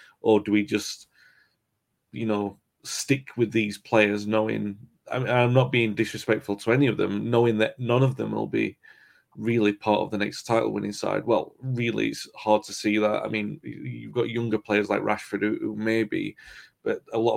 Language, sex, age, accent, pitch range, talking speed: English, male, 30-49, British, 105-120 Hz, 190 wpm